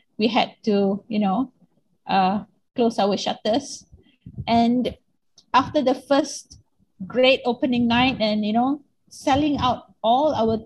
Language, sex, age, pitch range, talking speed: English, female, 30-49, 210-260 Hz, 130 wpm